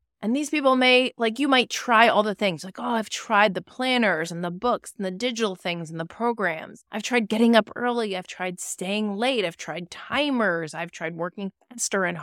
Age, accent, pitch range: 30-49, American, 170-230 Hz